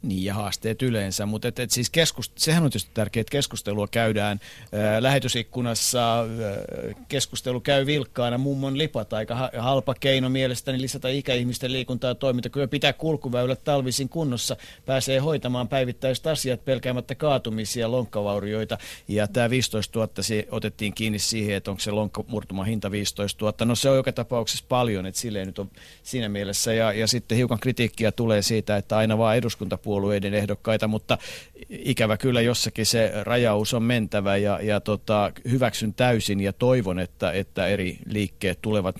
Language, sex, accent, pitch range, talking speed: Finnish, male, native, 105-125 Hz, 160 wpm